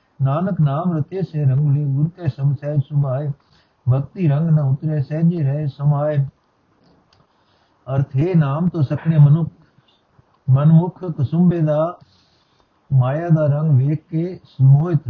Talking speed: 120 wpm